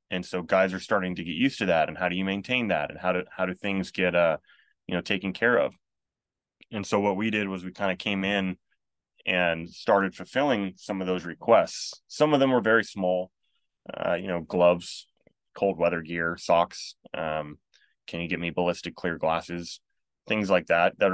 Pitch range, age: 85-95 Hz, 20-39